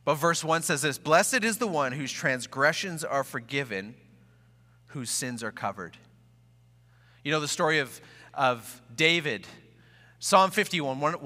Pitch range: 115-150 Hz